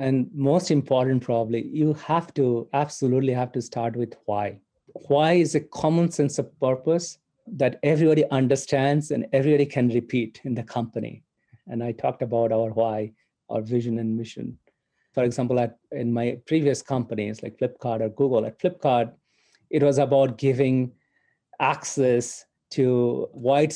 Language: English